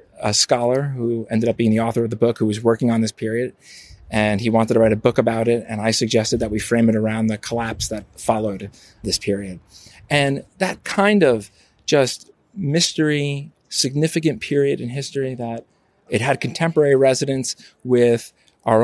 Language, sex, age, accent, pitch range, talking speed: English, male, 30-49, American, 105-130 Hz, 180 wpm